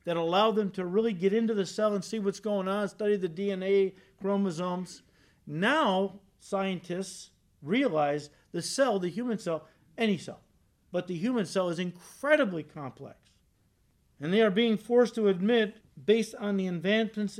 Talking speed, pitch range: 160 wpm, 180-230 Hz